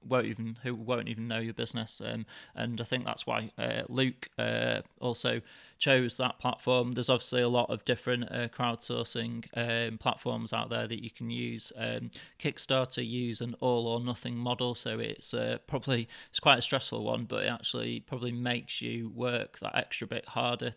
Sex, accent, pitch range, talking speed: male, British, 115-125 Hz, 180 wpm